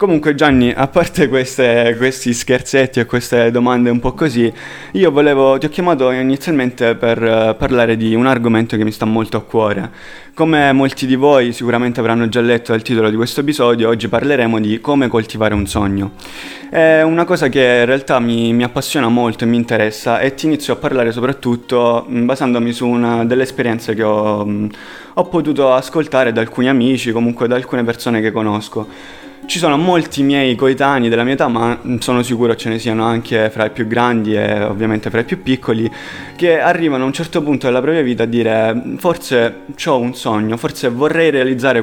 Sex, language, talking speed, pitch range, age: male, Italian, 185 wpm, 115-135 Hz, 20-39